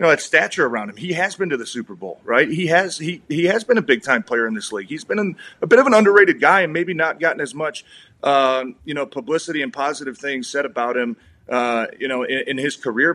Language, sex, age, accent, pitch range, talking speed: English, male, 30-49, American, 125-175 Hz, 260 wpm